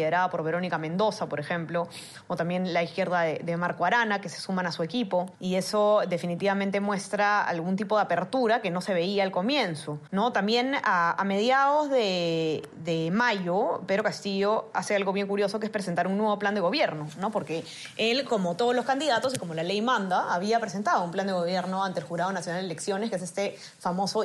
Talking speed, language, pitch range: 205 wpm, Spanish, 175-215 Hz